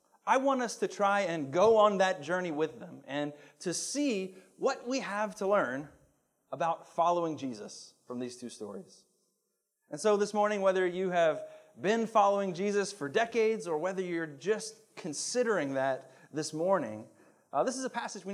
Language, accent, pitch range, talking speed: English, American, 165-220 Hz, 175 wpm